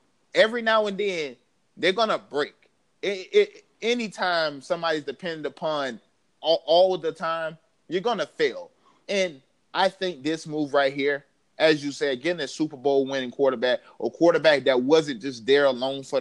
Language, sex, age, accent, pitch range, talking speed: English, male, 20-39, American, 130-155 Hz, 165 wpm